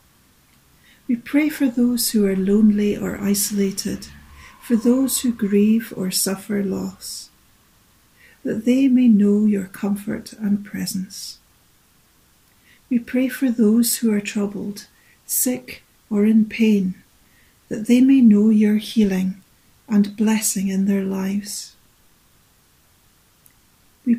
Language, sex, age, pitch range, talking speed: English, female, 60-79, 200-230 Hz, 115 wpm